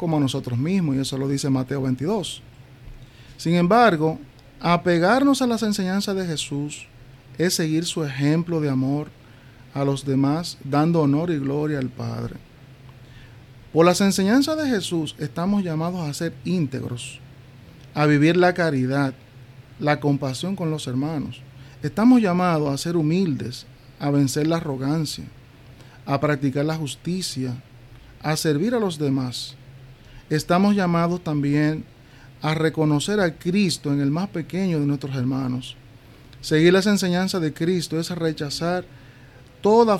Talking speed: 140 wpm